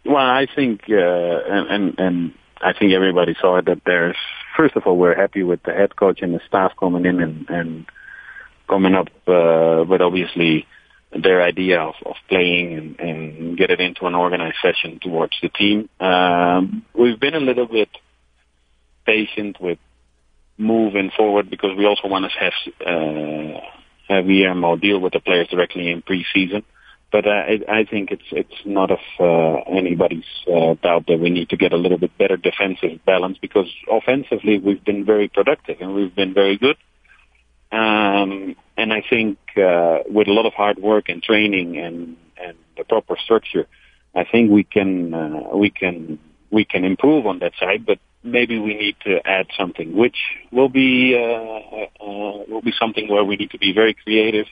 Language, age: English, 30-49